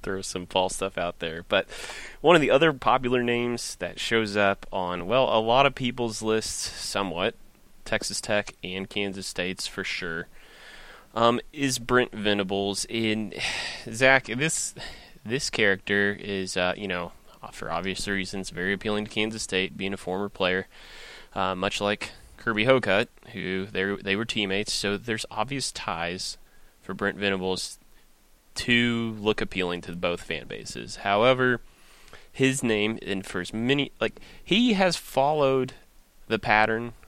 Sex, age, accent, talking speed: male, 20-39, American, 145 wpm